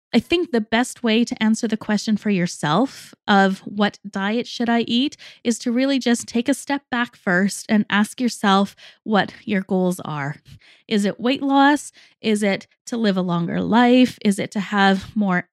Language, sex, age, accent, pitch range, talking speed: English, female, 20-39, American, 205-255 Hz, 190 wpm